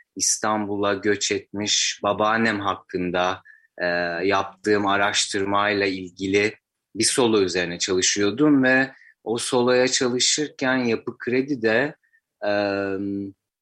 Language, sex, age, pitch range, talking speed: Turkish, male, 30-49, 100-125 Hz, 95 wpm